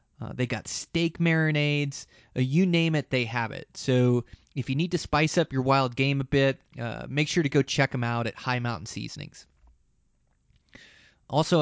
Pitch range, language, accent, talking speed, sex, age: 120-145 Hz, English, American, 190 wpm, male, 20-39